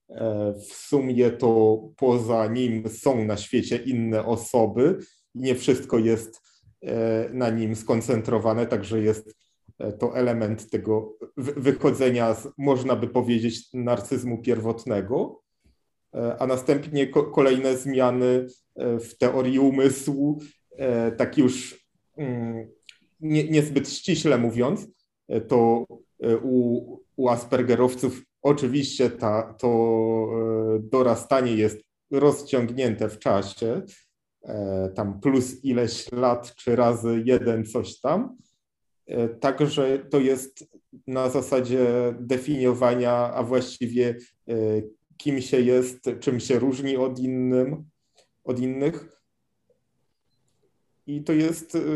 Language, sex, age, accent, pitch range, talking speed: Polish, male, 30-49, native, 115-135 Hz, 95 wpm